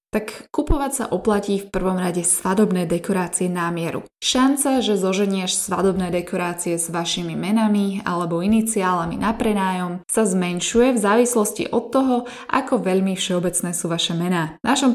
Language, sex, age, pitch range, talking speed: Slovak, female, 20-39, 175-220 Hz, 145 wpm